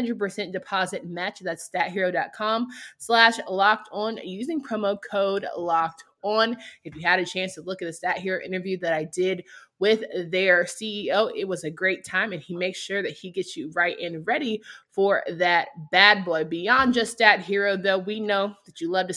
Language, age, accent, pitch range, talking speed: English, 20-39, American, 180-215 Hz, 190 wpm